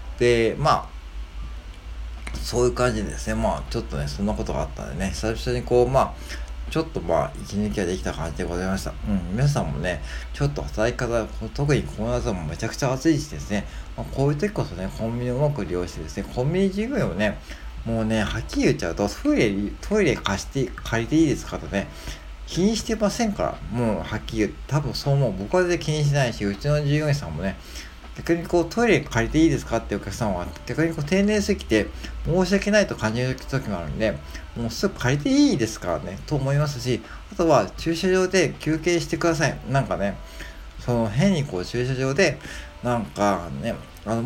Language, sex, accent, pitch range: Japanese, male, native, 90-150 Hz